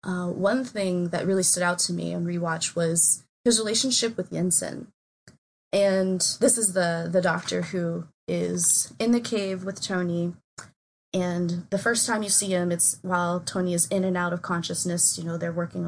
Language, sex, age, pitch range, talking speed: English, female, 20-39, 170-200 Hz, 185 wpm